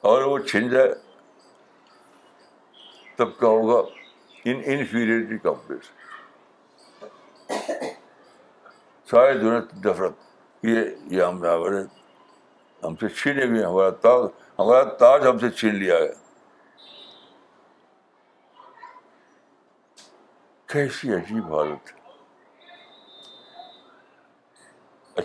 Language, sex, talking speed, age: Urdu, male, 70 wpm, 60-79